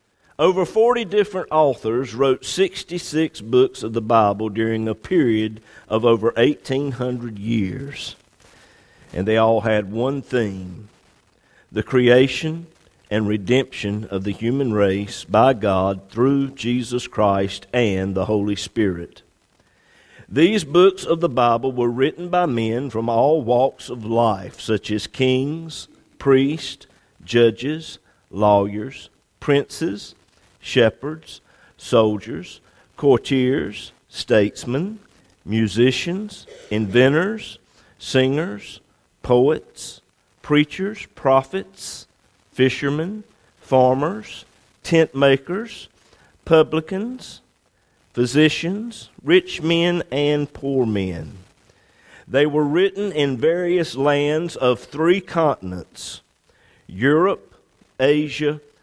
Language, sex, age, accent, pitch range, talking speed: English, male, 50-69, American, 110-150 Hz, 95 wpm